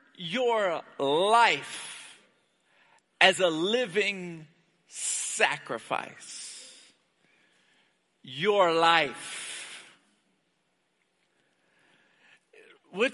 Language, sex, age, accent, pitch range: English, male, 50-69, American, 230-330 Hz